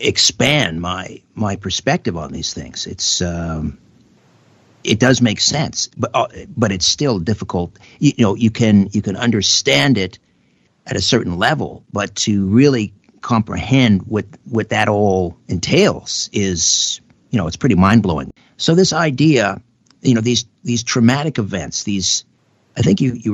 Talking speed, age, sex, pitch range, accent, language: 155 wpm, 50-69, male, 95-125 Hz, American, English